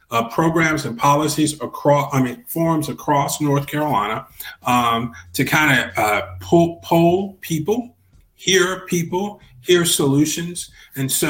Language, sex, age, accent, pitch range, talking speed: English, male, 40-59, American, 115-140 Hz, 135 wpm